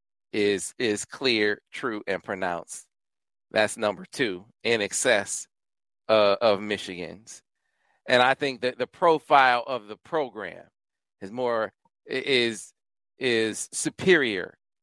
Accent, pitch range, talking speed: American, 110-150 Hz, 115 wpm